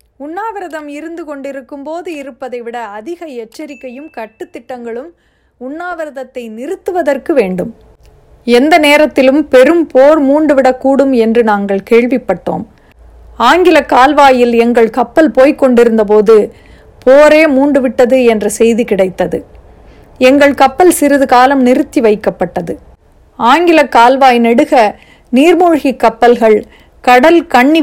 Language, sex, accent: Tamil, female, native